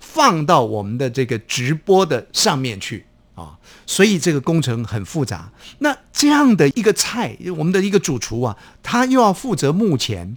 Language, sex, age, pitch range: Chinese, male, 50-69, 125-200 Hz